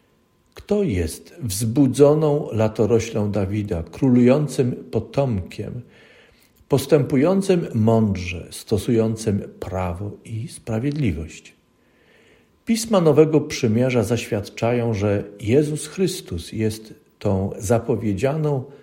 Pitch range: 105-140 Hz